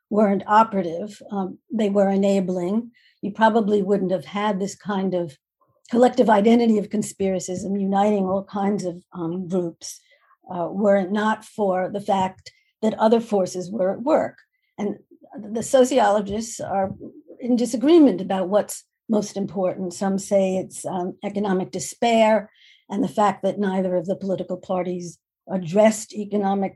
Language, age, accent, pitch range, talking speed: English, 60-79, American, 185-220 Hz, 145 wpm